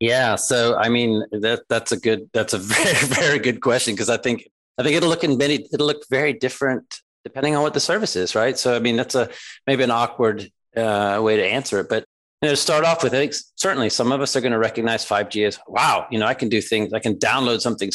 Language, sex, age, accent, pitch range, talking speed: English, male, 40-59, American, 105-135 Hz, 255 wpm